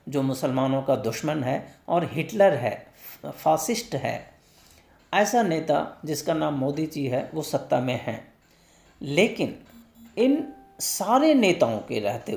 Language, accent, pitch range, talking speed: Hindi, native, 140-190 Hz, 130 wpm